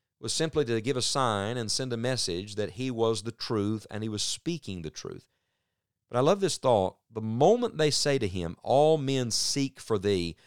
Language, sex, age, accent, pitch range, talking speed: English, male, 50-69, American, 95-130 Hz, 210 wpm